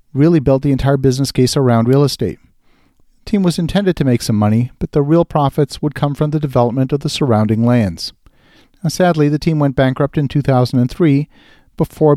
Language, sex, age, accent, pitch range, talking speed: English, male, 50-69, American, 120-150 Hz, 185 wpm